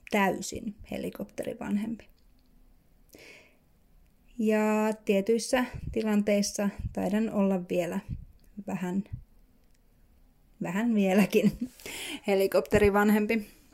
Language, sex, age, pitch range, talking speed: Finnish, female, 30-49, 195-250 Hz, 50 wpm